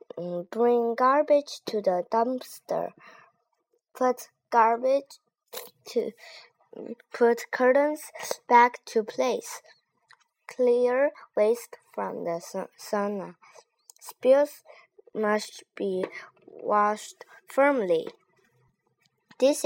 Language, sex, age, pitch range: Chinese, female, 20-39, 195-285 Hz